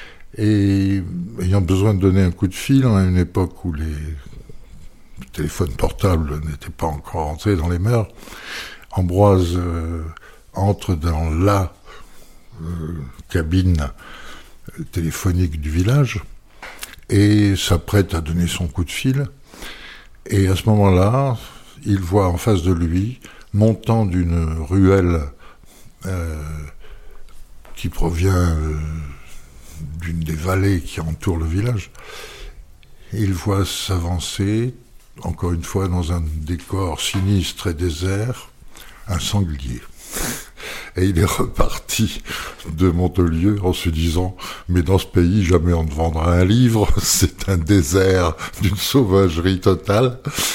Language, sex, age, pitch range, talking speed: French, male, 60-79, 85-100 Hz, 125 wpm